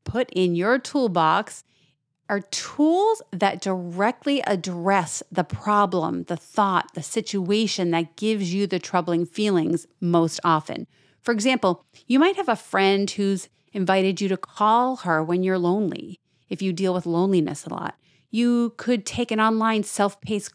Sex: female